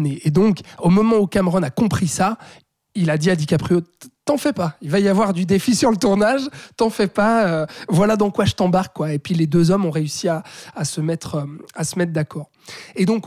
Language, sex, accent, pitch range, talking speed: French, male, French, 155-190 Hz, 240 wpm